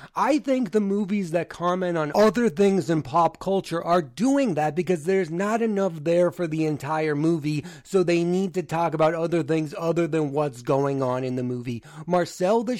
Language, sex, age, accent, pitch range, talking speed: English, male, 30-49, American, 145-185 Hz, 195 wpm